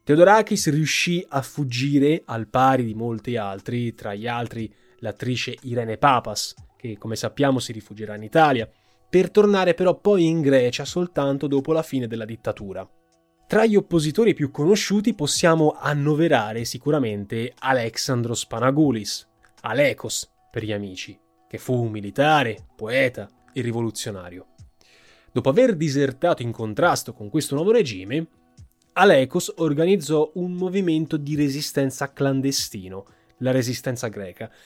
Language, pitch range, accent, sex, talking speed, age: Italian, 115-155 Hz, native, male, 130 wpm, 20-39